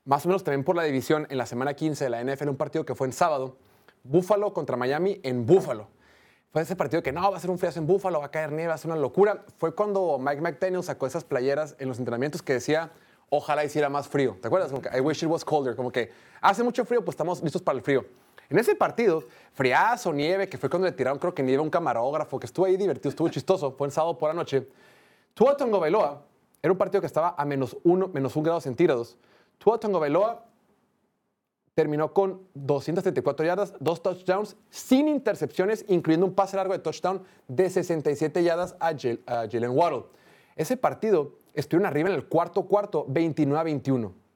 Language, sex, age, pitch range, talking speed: Spanish, male, 30-49, 140-185 Hz, 210 wpm